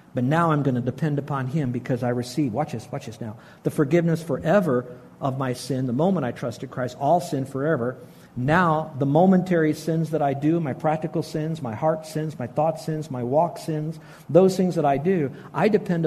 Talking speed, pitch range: 210 wpm, 135-170 Hz